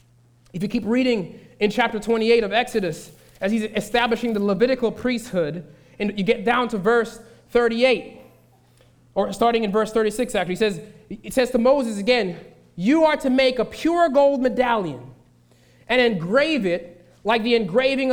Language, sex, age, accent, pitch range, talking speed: English, male, 20-39, American, 210-265 Hz, 165 wpm